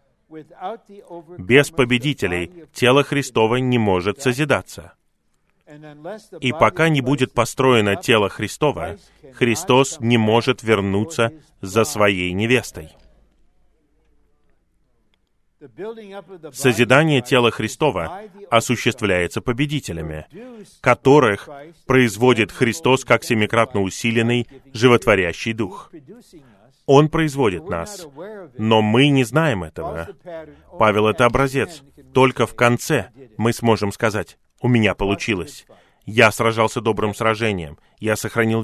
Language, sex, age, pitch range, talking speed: Russian, male, 30-49, 110-145 Hz, 95 wpm